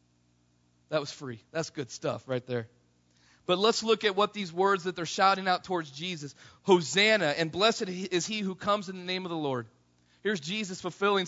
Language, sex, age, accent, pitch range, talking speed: English, male, 40-59, American, 125-200 Hz, 195 wpm